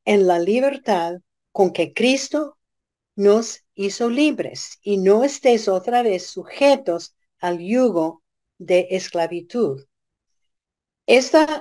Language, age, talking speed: Spanish, 50-69, 105 wpm